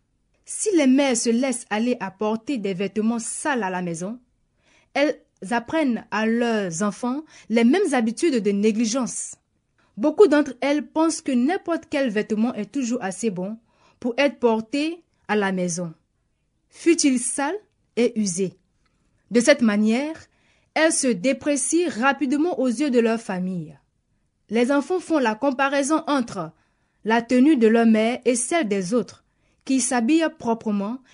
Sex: female